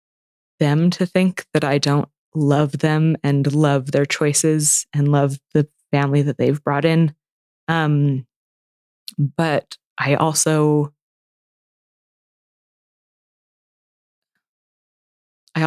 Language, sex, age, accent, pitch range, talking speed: English, female, 20-39, American, 145-165 Hz, 95 wpm